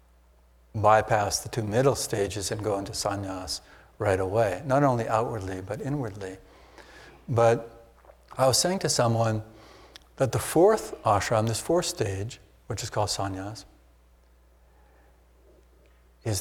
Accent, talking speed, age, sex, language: American, 125 wpm, 60-79, male, English